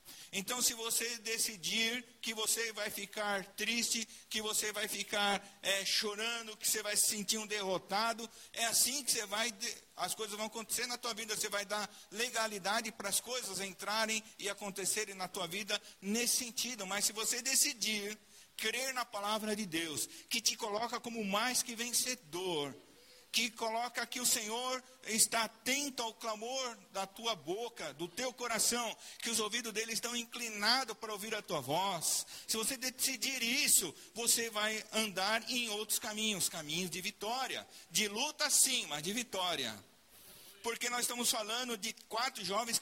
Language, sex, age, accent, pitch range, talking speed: Portuguese, male, 50-69, Brazilian, 205-240 Hz, 165 wpm